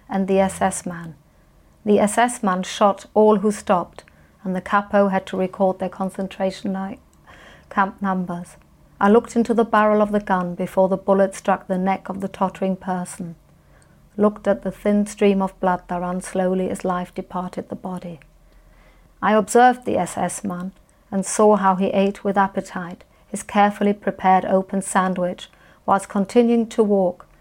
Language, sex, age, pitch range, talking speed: English, female, 50-69, 180-205 Hz, 165 wpm